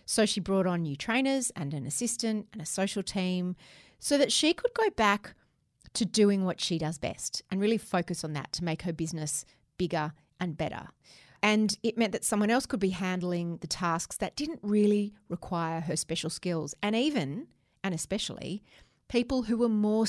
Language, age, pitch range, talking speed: English, 30-49, 170-230 Hz, 190 wpm